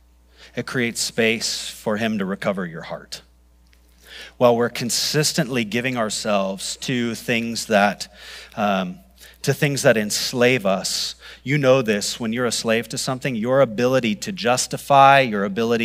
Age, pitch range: 30-49, 110-165 Hz